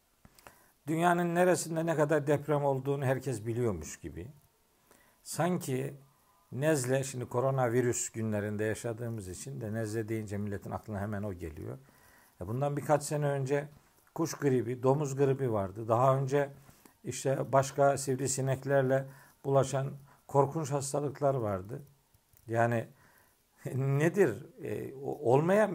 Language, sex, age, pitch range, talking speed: Turkish, male, 50-69, 115-160 Hz, 105 wpm